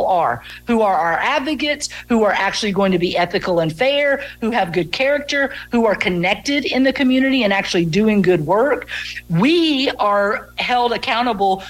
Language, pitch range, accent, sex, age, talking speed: English, 200-245 Hz, American, female, 50-69, 170 wpm